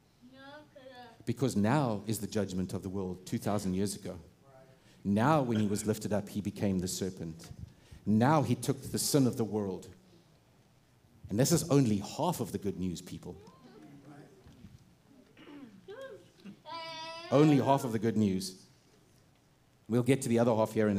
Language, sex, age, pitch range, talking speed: English, male, 50-69, 110-145 Hz, 150 wpm